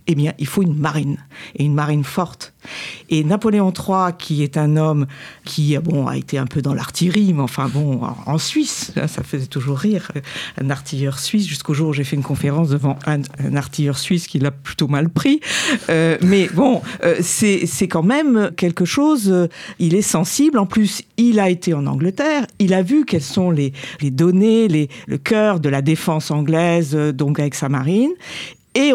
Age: 50-69